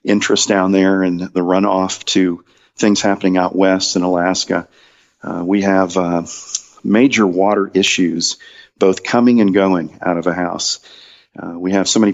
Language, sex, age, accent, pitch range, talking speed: English, male, 40-59, American, 90-100 Hz, 165 wpm